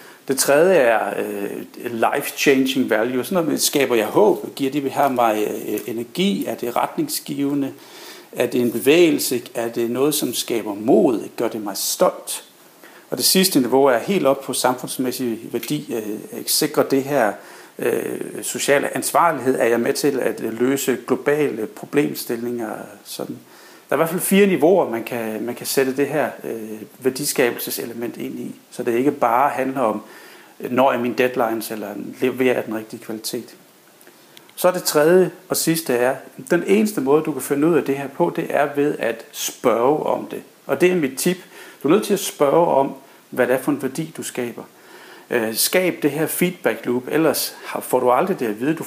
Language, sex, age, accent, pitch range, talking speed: Danish, male, 60-79, native, 120-155 Hz, 185 wpm